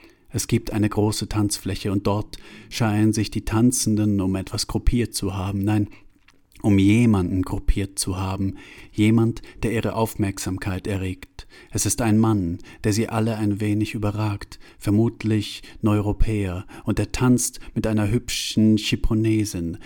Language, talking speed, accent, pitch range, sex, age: German, 140 wpm, German, 100-110 Hz, male, 40-59